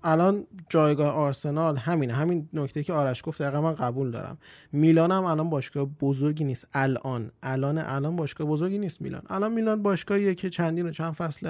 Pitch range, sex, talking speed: 145-180 Hz, male, 170 wpm